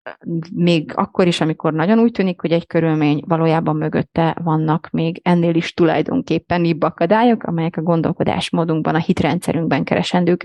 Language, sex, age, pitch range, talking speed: Hungarian, female, 30-49, 160-195 Hz, 145 wpm